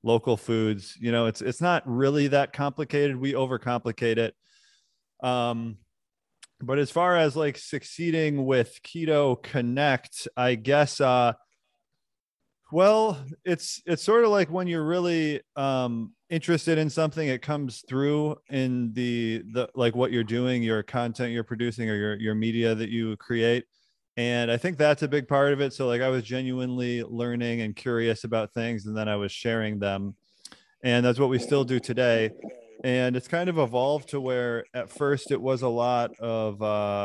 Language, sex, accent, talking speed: English, male, American, 175 wpm